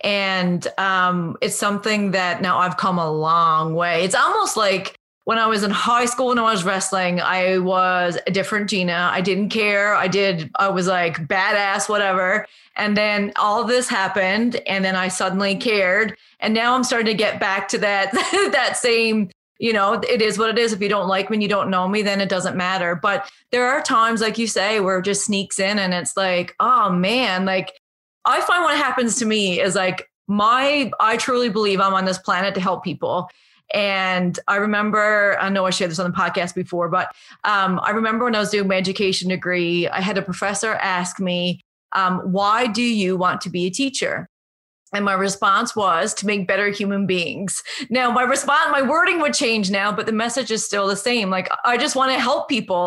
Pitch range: 185-220 Hz